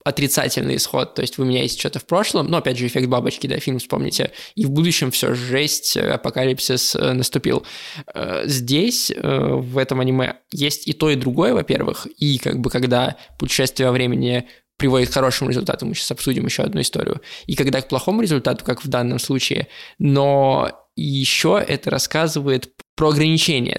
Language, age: Russian, 20-39